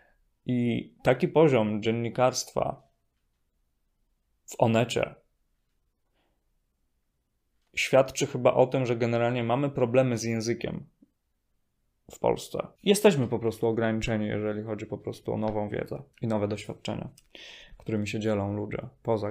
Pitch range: 110-135 Hz